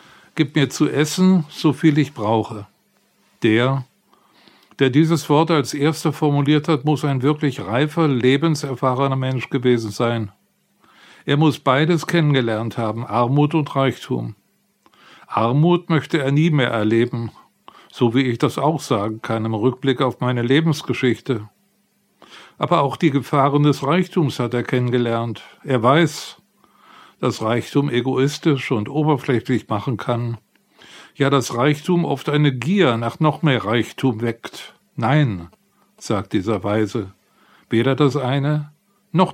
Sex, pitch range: male, 115-150 Hz